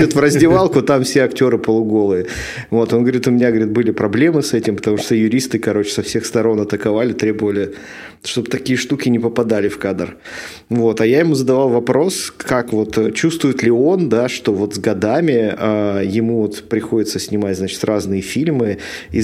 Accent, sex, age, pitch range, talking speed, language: native, male, 20-39, 105-130 Hz, 180 wpm, Russian